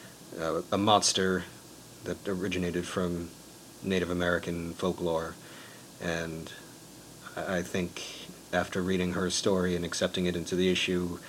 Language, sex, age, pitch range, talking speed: English, male, 40-59, 90-100 Hz, 115 wpm